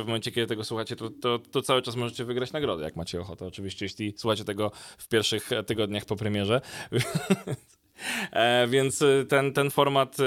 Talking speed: 170 wpm